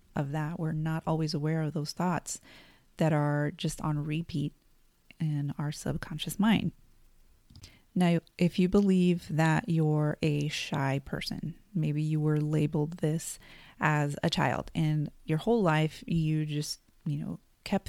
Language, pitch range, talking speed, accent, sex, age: English, 155-185 Hz, 150 wpm, American, female, 30-49